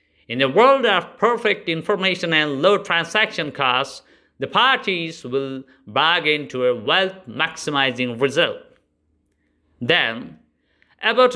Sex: male